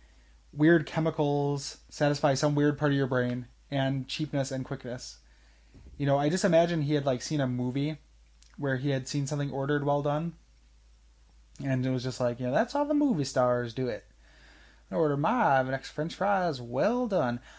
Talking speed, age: 190 wpm, 20-39